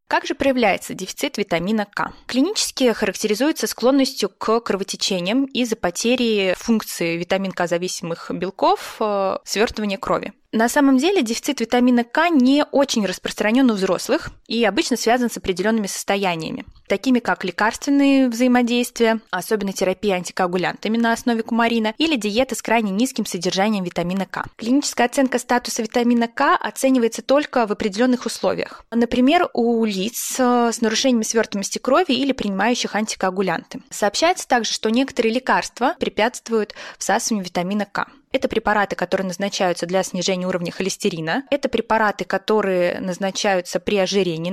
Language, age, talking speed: Russian, 20-39, 130 wpm